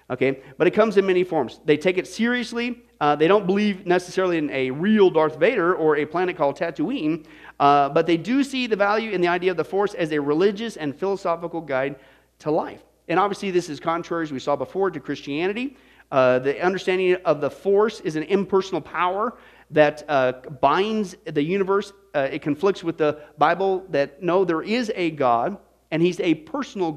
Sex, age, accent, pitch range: male, 40-59, American, 140-185 Hz